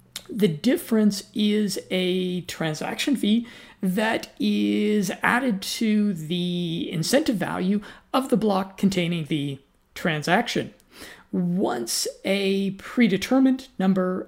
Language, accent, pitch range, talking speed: English, American, 180-225 Hz, 95 wpm